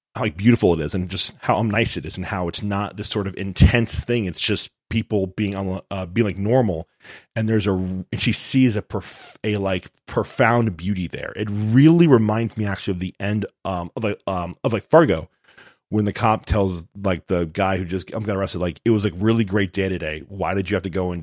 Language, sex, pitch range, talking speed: English, male, 90-110 Hz, 240 wpm